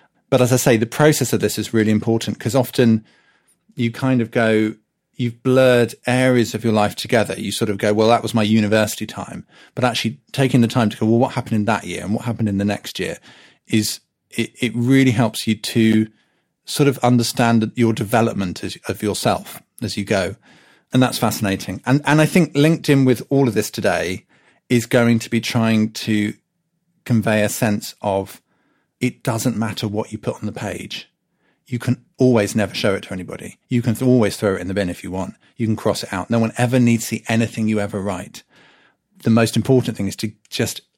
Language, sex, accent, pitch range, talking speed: English, male, British, 105-125 Hz, 210 wpm